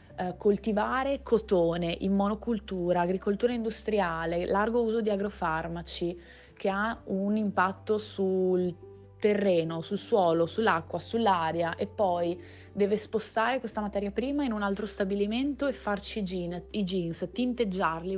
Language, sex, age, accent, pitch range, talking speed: Italian, female, 20-39, native, 185-235 Hz, 120 wpm